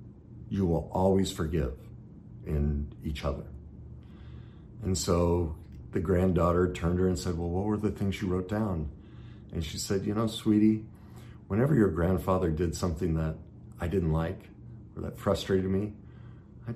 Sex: male